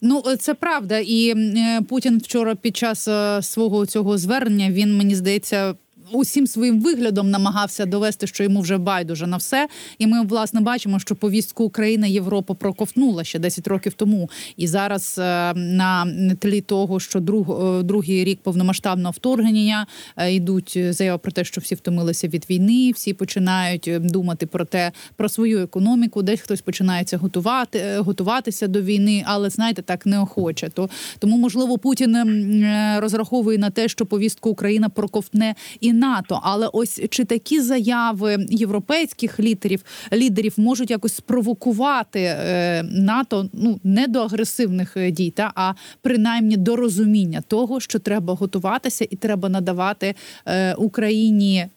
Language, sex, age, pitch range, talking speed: Ukrainian, female, 20-39, 190-225 Hz, 140 wpm